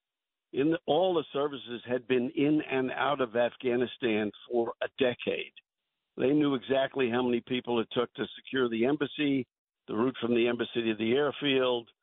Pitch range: 120-145 Hz